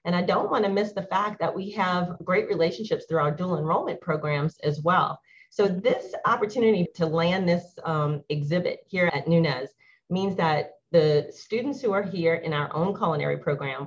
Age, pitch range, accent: 40-59, 150-180 Hz, American